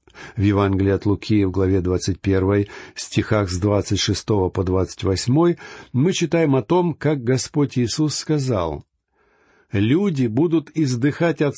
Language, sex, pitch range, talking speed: Russian, male, 100-145 Hz, 140 wpm